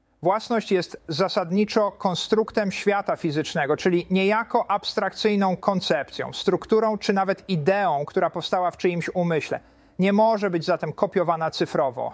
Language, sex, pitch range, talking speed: Polish, male, 165-200 Hz, 125 wpm